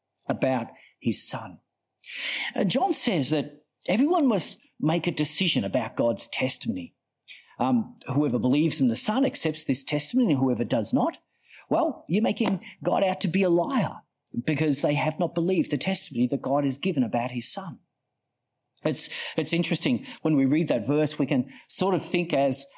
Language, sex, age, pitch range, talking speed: English, male, 40-59, 135-190 Hz, 170 wpm